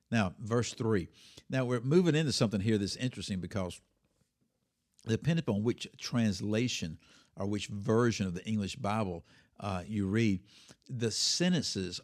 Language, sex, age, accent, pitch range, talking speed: English, male, 60-79, American, 100-120 Hz, 140 wpm